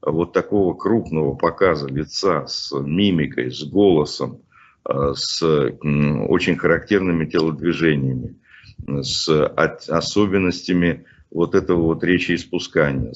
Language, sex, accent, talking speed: Russian, male, native, 90 wpm